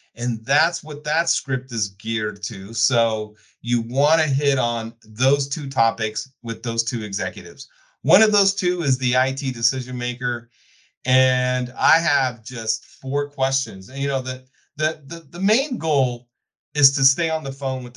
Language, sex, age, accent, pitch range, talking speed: English, male, 40-59, American, 120-150 Hz, 175 wpm